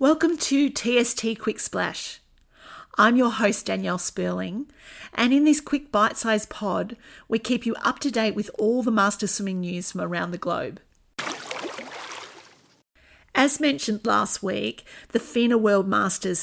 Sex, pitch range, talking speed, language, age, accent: female, 195-245 Hz, 145 wpm, English, 40-59, Australian